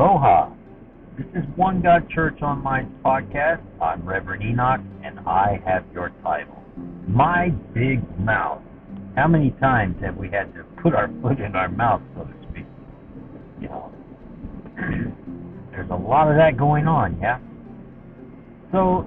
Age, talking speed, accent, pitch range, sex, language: 60-79, 145 wpm, American, 105-155 Hz, male, English